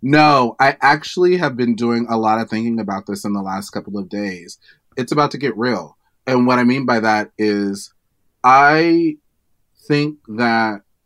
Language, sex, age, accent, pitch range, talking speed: English, male, 30-49, American, 105-130 Hz, 180 wpm